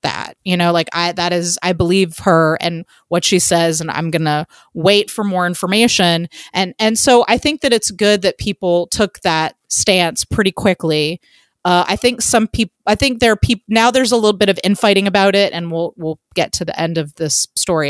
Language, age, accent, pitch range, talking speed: English, 30-49, American, 170-210 Hz, 220 wpm